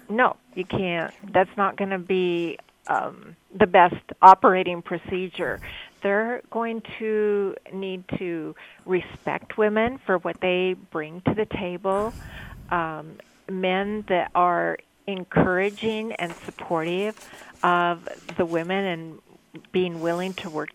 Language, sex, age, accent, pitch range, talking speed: English, female, 50-69, American, 170-205 Hz, 120 wpm